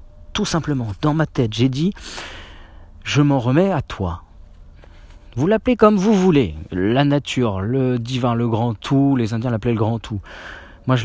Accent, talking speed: French, 175 wpm